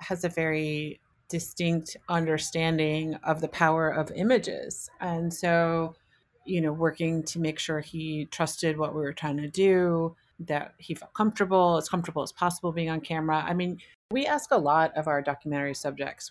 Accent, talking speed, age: American, 175 wpm, 30-49